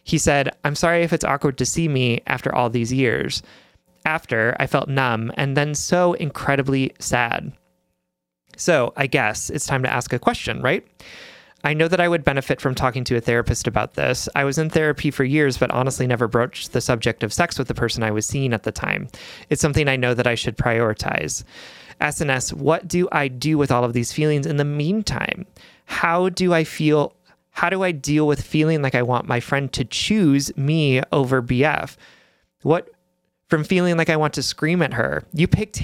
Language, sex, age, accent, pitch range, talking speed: English, male, 30-49, American, 120-155 Hz, 205 wpm